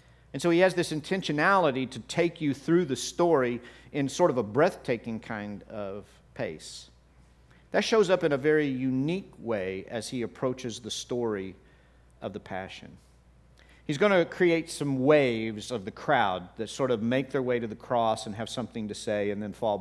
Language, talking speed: English, 190 wpm